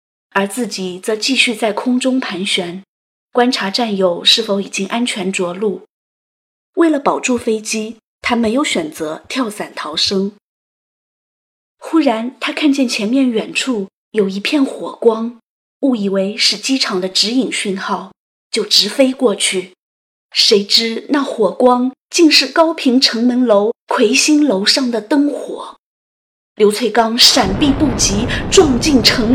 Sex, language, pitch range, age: female, Chinese, 205-265 Hz, 20-39